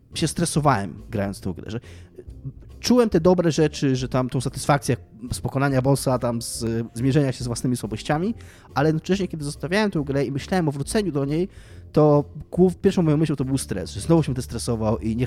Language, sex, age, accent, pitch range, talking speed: Polish, male, 20-39, native, 115-155 Hz, 190 wpm